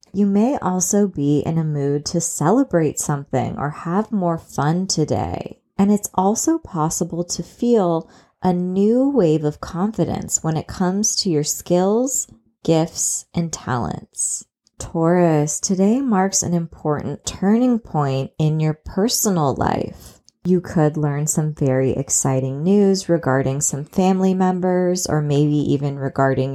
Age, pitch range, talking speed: 20-39, 150-195 Hz, 140 wpm